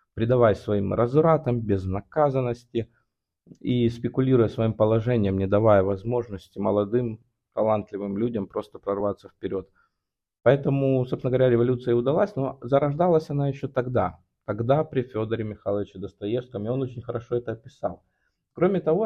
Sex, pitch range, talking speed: male, 105-140 Hz, 130 wpm